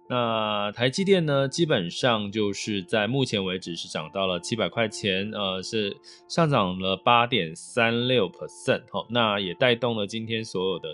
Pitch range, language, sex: 95-135 Hz, Chinese, male